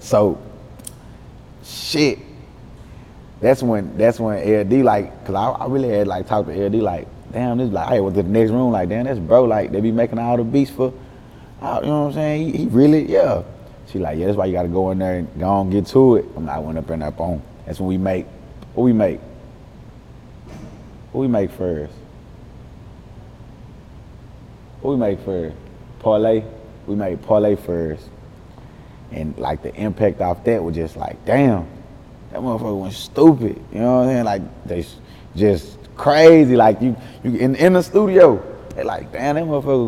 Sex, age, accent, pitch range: male, 30-49, American, 95-125 Hz